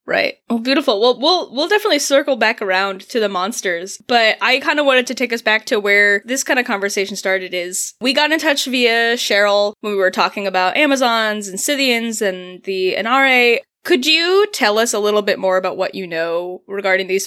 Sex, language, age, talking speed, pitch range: female, English, 10-29, 210 wpm, 190-250 Hz